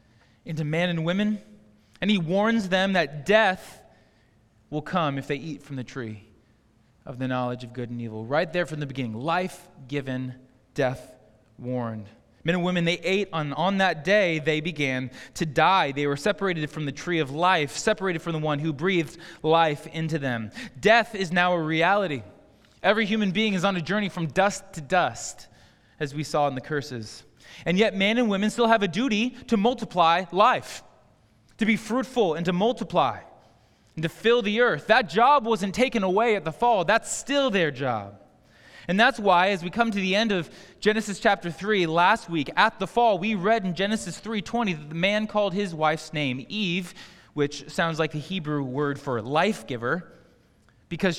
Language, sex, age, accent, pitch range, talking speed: English, male, 20-39, American, 135-200 Hz, 190 wpm